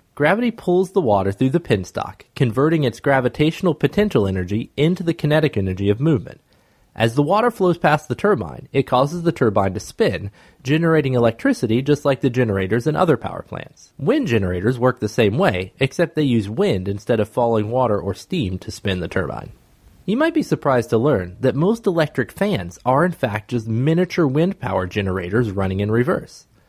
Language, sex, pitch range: English, male, 105-155 Hz